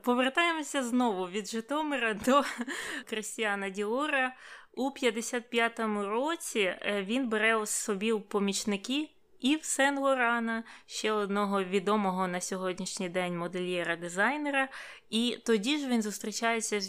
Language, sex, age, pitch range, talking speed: Ukrainian, female, 20-39, 195-245 Hz, 105 wpm